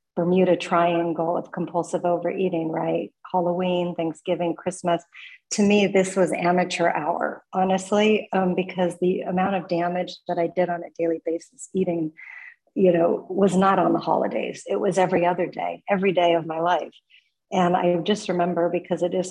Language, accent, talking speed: English, American, 170 wpm